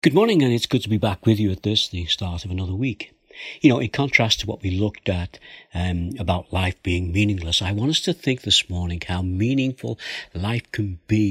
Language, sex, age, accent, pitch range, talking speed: English, male, 60-79, British, 90-125 Hz, 230 wpm